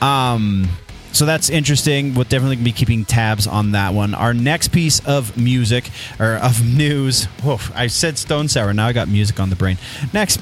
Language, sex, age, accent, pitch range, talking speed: English, male, 30-49, American, 110-140 Hz, 190 wpm